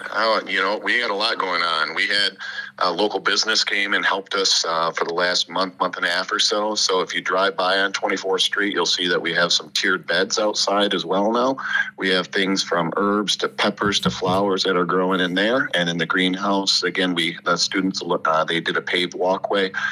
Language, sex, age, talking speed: English, male, 50-69, 230 wpm